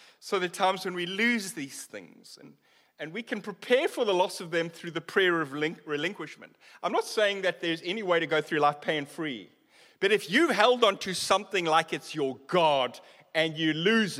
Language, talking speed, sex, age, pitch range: English, 210 wpm, male, 30-49, 160-235 Hz